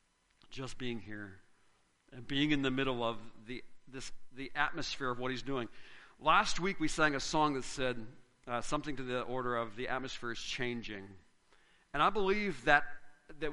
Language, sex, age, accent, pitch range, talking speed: English, male, 50-69, American, 125-160 Hz, 175 wpm